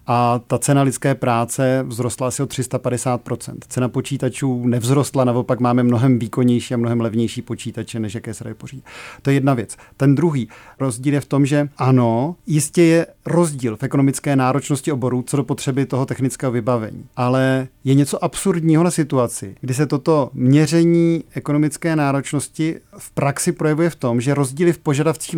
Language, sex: Czech, male